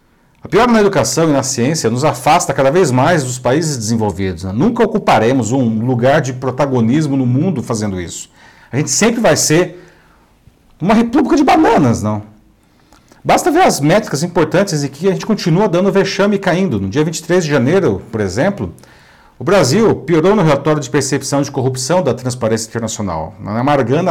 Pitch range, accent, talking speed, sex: 125-170 Hz, Brazilian, 175 wpm, male